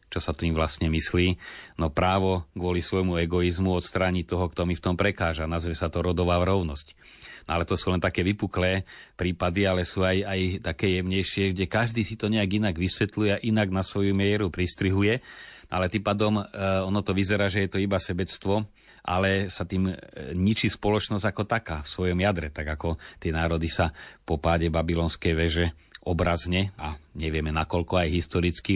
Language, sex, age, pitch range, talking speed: Slovak, male, 30-49, 85-95 Hz, 185 wpm